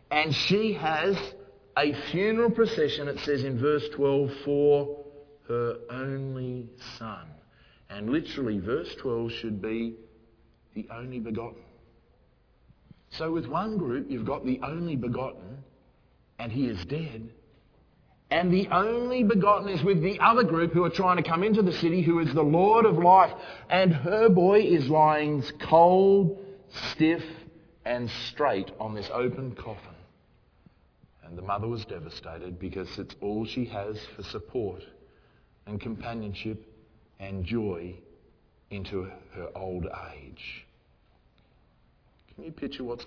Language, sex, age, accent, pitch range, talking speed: English, male, 40-59, Australian, 105-150 Hz, 135 wpm